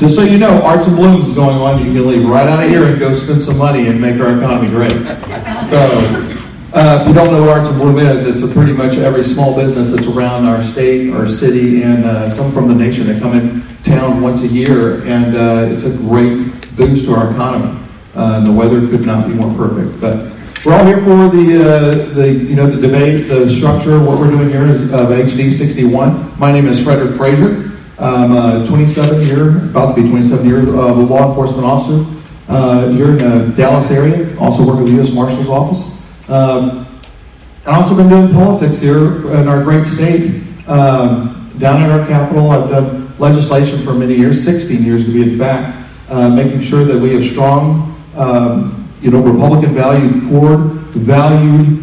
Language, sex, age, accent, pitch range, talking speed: English, male, 40-59, American, 120-150 Hz, 205 wpm